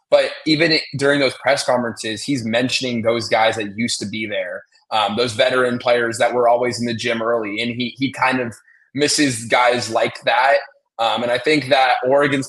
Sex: male